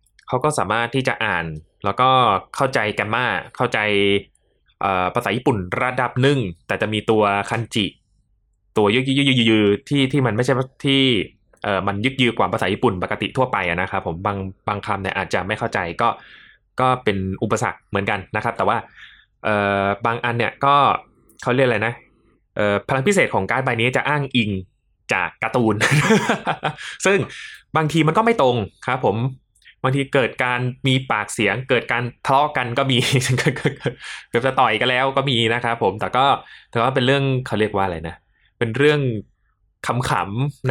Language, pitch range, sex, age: Thai, 100-130 Hz, male, 20-39